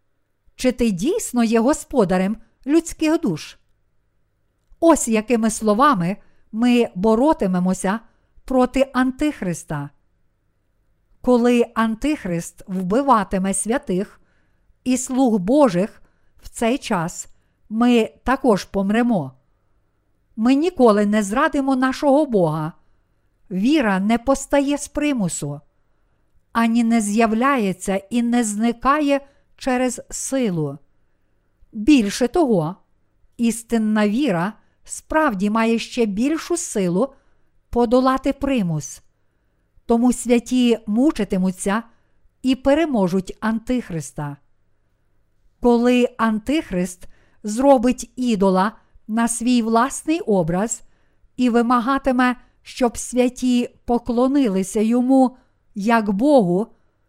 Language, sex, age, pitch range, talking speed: Ukrainian, female, 50-69, 180-255 Hz, 85 wpm